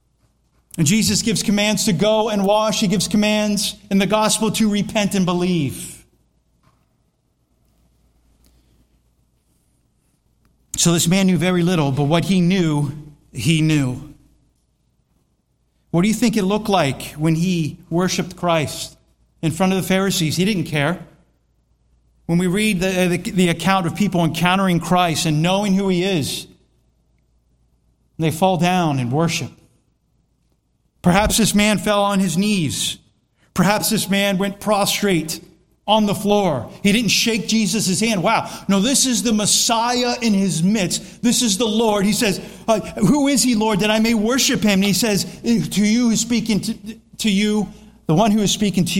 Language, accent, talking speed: English, American, 160 wpm